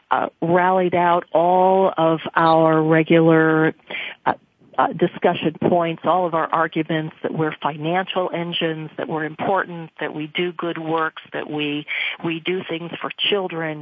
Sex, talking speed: female, 150 wpm